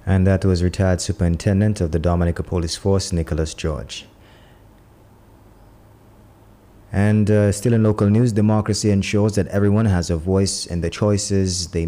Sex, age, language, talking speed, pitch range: male, 20-39, English, 140 wpm, 85-100 Hz